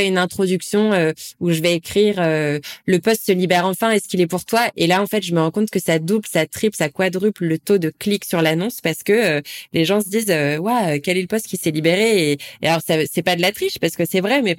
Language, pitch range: French, 175-215 Hz